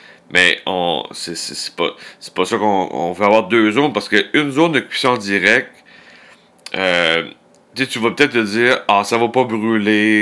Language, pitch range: French, 100-120 Hz